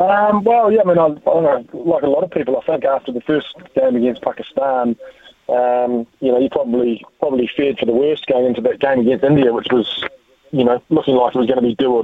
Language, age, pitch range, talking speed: English, 20-39, 125-170 Hz, 235 wpm